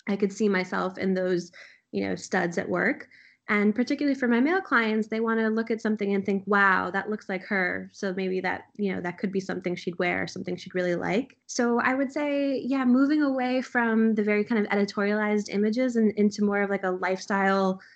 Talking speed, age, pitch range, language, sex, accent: 220 wpm, 20-39, 195-220 Hz, English, female, American